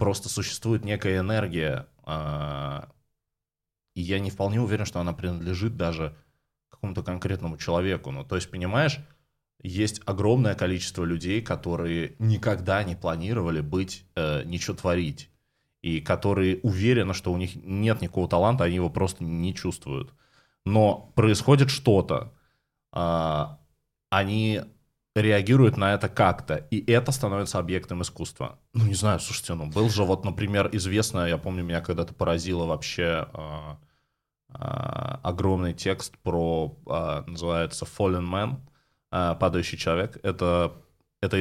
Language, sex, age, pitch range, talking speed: Russian, male, 20-39, 85-110 Hz, 120 wpm